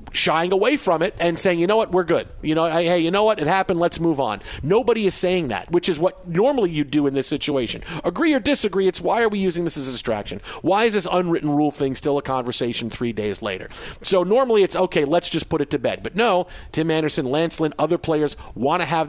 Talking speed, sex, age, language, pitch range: 250 wpm, male, 50-69, English, 140-195 Hz